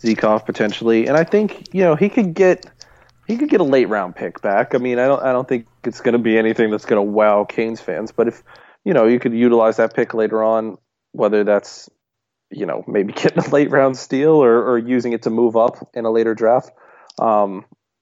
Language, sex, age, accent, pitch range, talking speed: English, male, 20-39, American, 110-125 Hz, 230 wpm